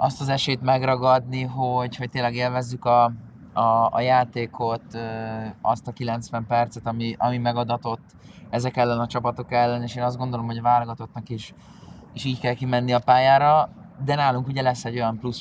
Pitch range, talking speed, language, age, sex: 115-125 Hz, 175 wpm, Hungarian, 20-39, male